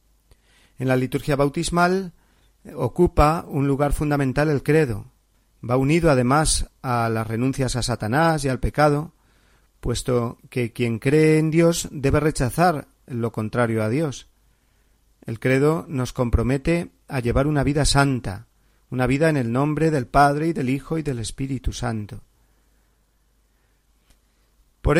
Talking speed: 135 wpm